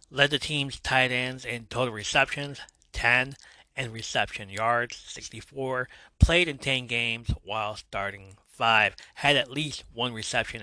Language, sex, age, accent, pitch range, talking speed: English, male, 30-49, American, 105-130 Hz, 140 wpm